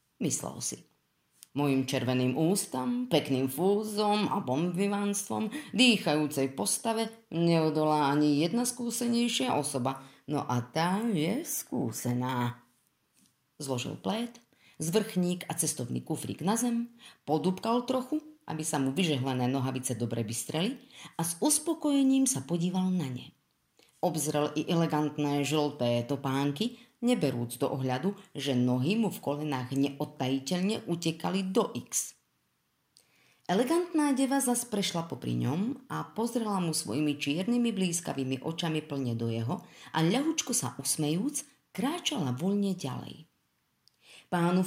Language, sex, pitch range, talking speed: Slovak, female, 135-220 Hz, 115 wpm